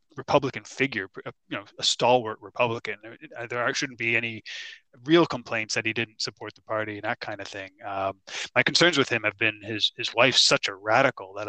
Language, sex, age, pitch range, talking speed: English, male, 20-39, 115-135 Hz, 200 wpm